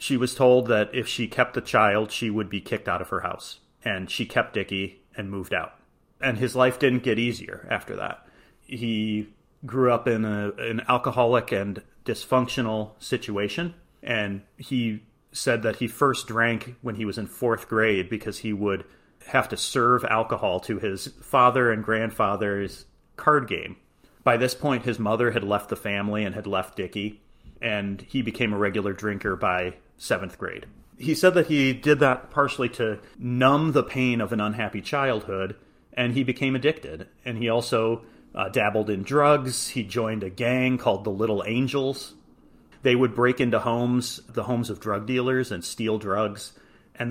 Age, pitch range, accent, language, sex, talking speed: 30-49, 105-125 Hz, American, English, male, 175 wpm